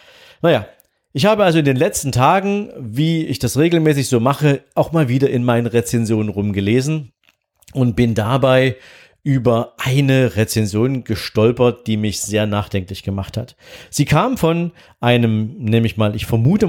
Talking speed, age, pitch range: 155 wpm, 40-59, 110-140 Hz